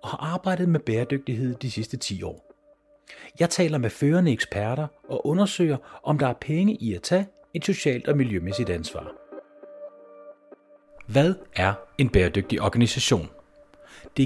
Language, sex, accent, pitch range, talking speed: Danish, male, native, 105-160 Hz, 145 wpm